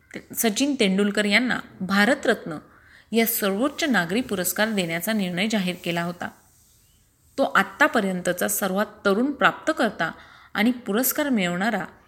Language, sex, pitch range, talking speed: Marathi, female, 190-240 Hz, 105 wpm